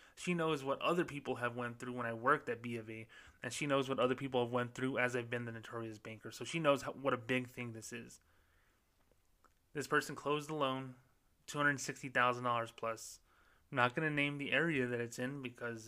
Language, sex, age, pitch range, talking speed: English, male, 20-39, 115-130 Hz, 215 wpm